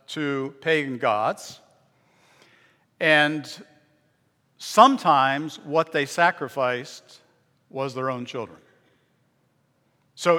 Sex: male